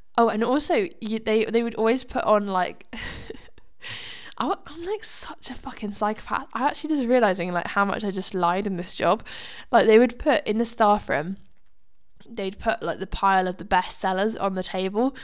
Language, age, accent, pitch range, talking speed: English, 10-29, British, 190-230 Hz, 195 wpm